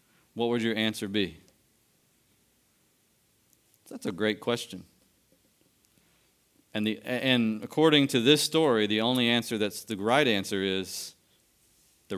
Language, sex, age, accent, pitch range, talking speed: English, male, 40-59, American, 105-140 Hz, 125 wpm